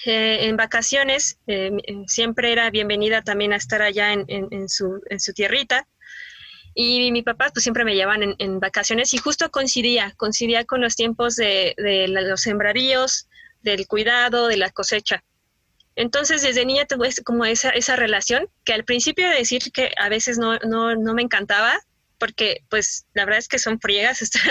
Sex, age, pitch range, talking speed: female, 20-39, 215-245 Hz, 185 wpm